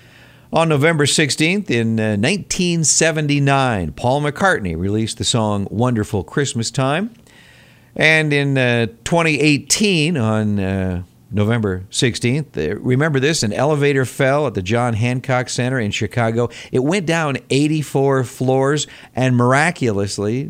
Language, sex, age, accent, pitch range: Japanese, male, 50-69, American, 110-150 Hz